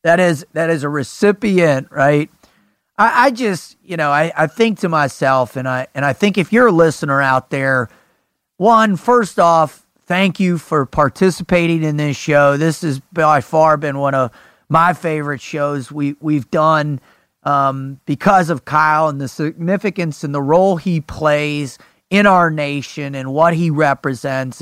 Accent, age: American, 30-49